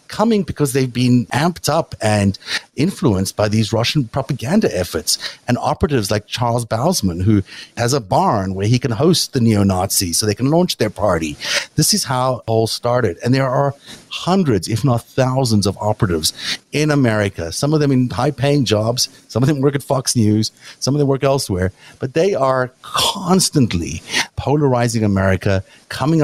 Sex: male